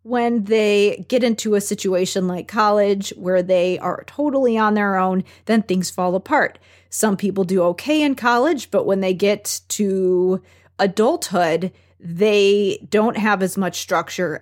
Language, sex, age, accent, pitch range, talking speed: English, female, 30-49, American, 185-235 Hz, 155 wpm